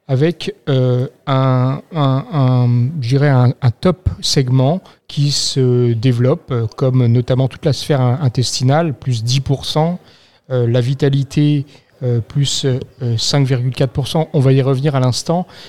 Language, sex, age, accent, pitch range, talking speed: French, male, 40-59, French, 125-150 Hz, 120 wpm